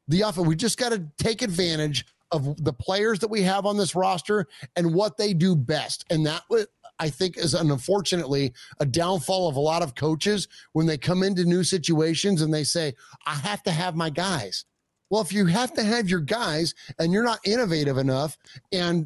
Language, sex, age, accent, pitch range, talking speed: English, male, 30-49, American, 155-205 Hz, 200 wpm